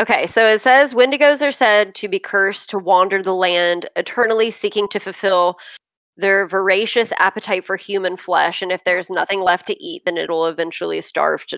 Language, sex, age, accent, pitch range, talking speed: English, female, 20-39, American, 180-210 Hz, 185 wpm